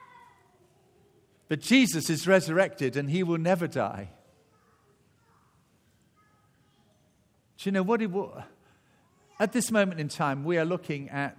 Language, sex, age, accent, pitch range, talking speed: English, male, 50-69, British, 145-195 Hz, 120 wpm